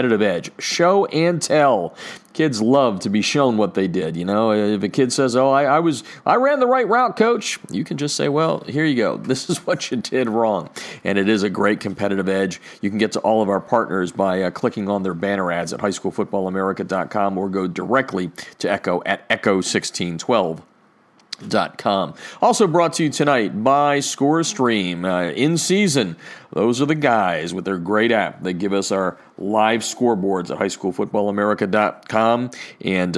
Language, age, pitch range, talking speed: English, 40-59, 100-145 Hz, 185 wpm